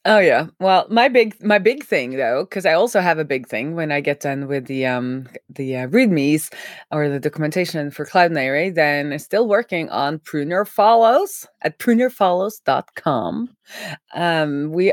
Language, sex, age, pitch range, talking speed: English, female, 20-39, 140-190 Hz, 170 wpm